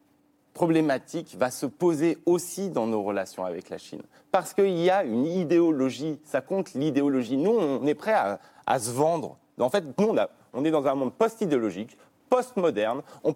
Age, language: 30-49, French